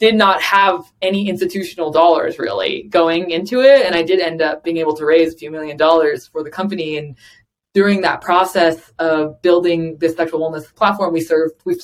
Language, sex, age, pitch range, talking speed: English, female, 20-39, 160-190 Hz, 200 wpm